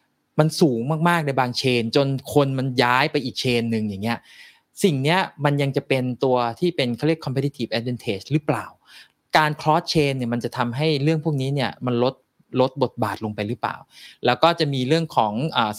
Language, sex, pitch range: Thai, male, 120-155 Hz